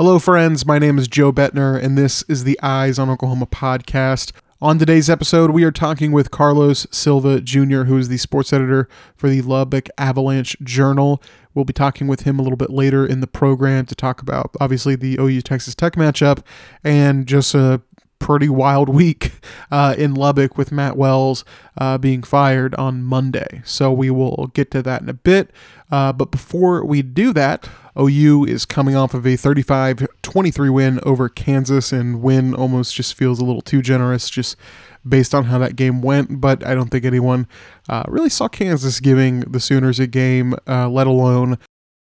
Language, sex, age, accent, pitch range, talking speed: English, male, 20-39, American, 130-140 Hz, 185 wpm